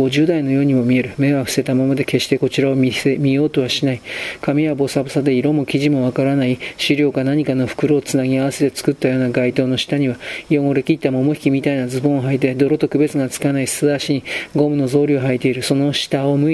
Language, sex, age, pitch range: Japanese, male, 40-59, 130-145 Hz